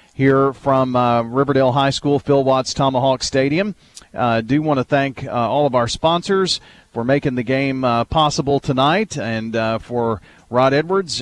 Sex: male